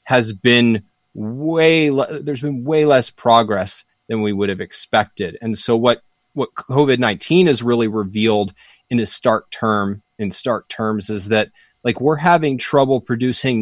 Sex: male